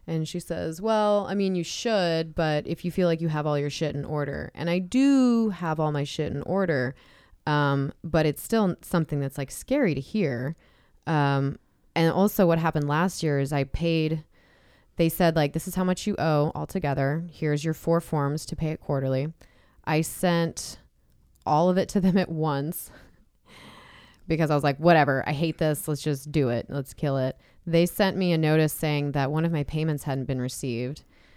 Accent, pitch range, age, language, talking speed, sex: American, 145-170 Hz, 20-39, English, 200 wpm, female